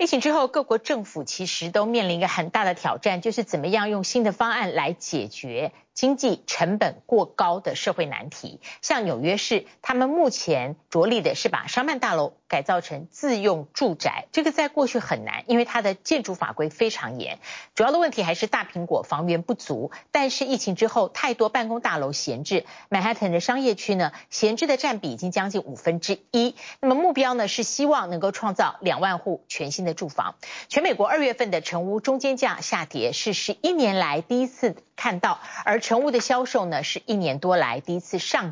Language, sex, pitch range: Chinese, female, 175-250 Hz